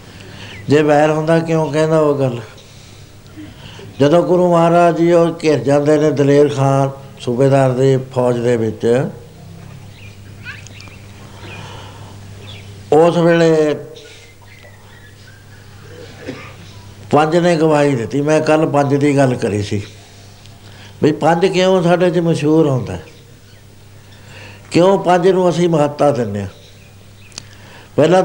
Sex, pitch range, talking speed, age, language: male, 105-155 Hz, 105 wpm, 60-79, Punjabi